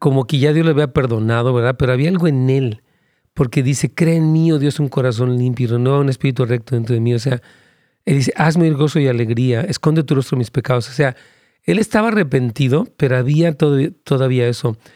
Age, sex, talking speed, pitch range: 40-59, male, 220 wpm, 125-155 Hz